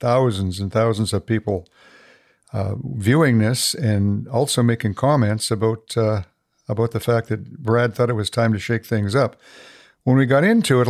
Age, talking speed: 60-79, 175 wpm